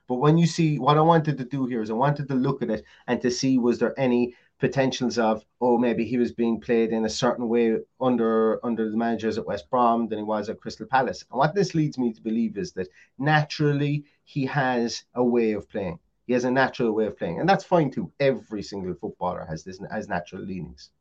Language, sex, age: English, male, 30-49